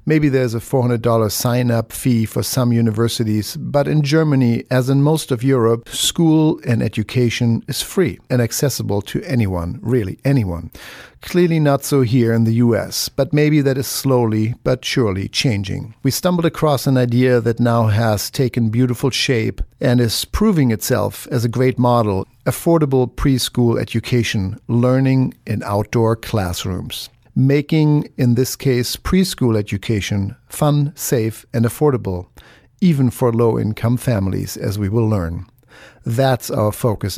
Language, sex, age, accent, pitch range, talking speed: English, male, 50-69, German, 115-140 Hz, 145 wpm